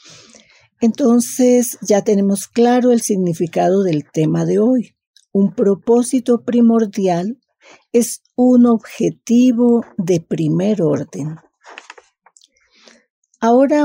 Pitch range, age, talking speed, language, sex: 185-240 Hz, 40-59, 85 wpm, Spanish, female